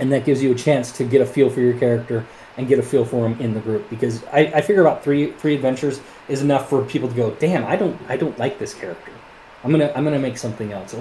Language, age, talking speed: English, 20-39, 280 wpm